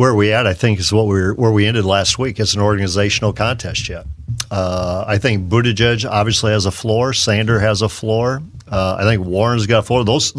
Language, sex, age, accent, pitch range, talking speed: English, male, 50-69, American, 100-125 Hz, 225 wpm